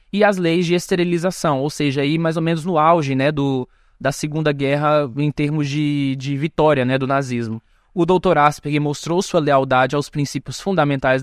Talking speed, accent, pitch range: 185 wpm, Brazilian, 140-190 Hz